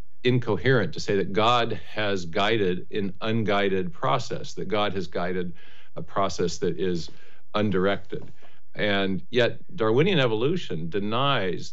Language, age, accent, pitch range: English, 50-69, American, 95-130 Hz